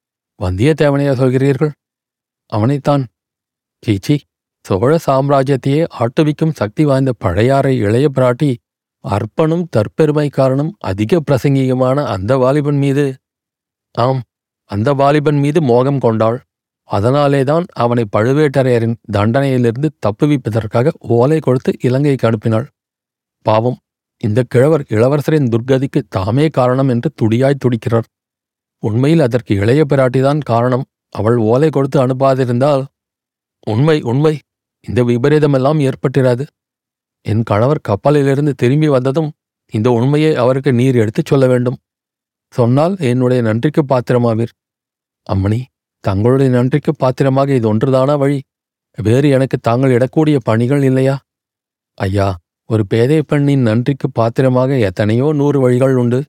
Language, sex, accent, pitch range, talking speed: Tamil, male, native, 115-145 Hz, 100 wpm